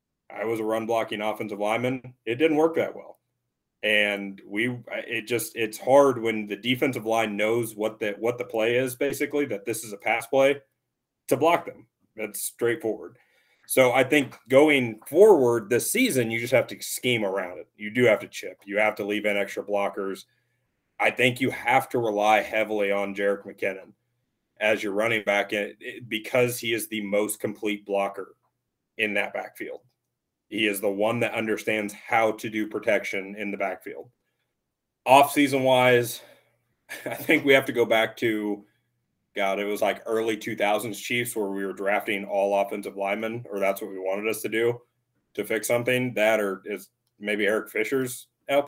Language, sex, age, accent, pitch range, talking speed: English, male, 30-49, American, 105-125 Hz, 180 wpm